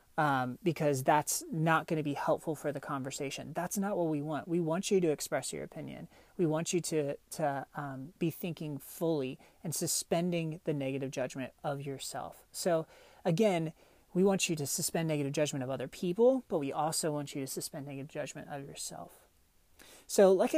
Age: 30-49